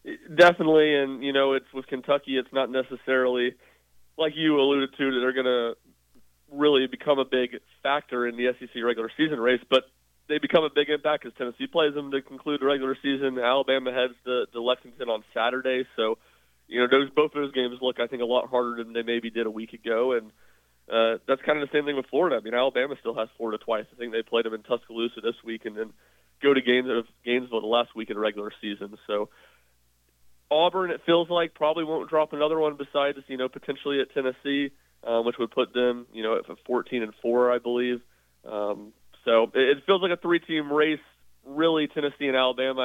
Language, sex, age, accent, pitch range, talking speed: English, male, 30-49, American, 115-135 Hz, 210 wpm